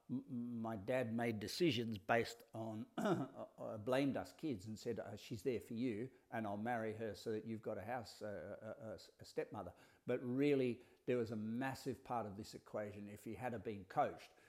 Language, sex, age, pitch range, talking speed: English, male, 50-69, 110-125 Hz, 175 wpm